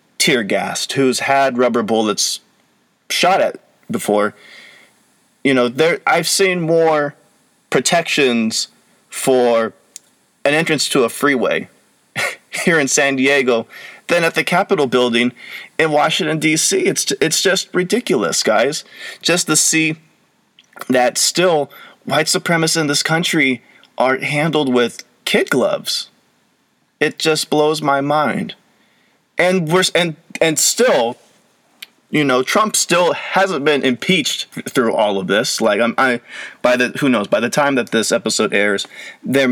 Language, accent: English, American